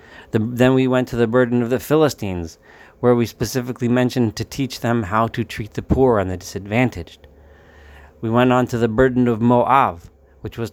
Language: English